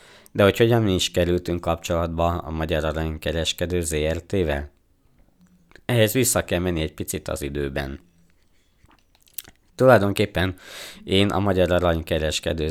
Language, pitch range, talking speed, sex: Hungarian, 80-95 Hz, 115 wpm, male